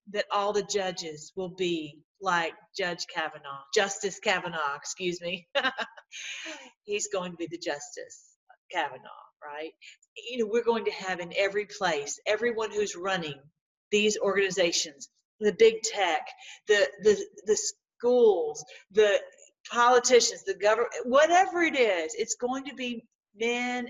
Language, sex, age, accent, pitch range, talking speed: English, female, 40-59, American, 195-285 Hz, 135 wpm